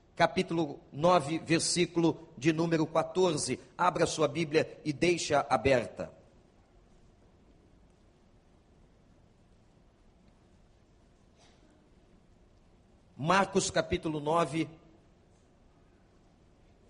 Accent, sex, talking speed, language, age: Brazilian, male, 55 wpm, Portuguese, 50-69